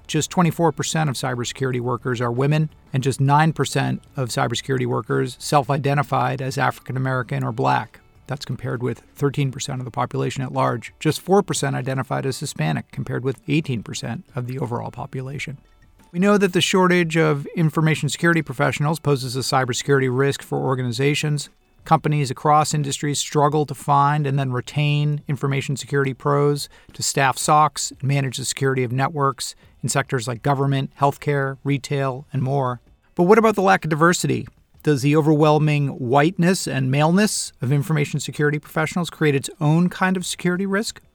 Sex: male